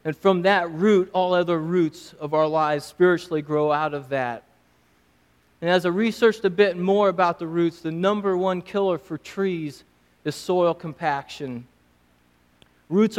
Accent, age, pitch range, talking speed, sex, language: American, 30-49, 130-180 Hz, 160 wpm, male, English